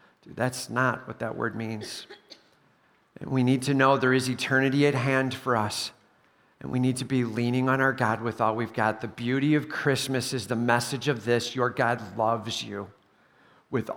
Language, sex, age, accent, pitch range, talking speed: English, male, 50-69, American, 120-155 Hz, 195 wpm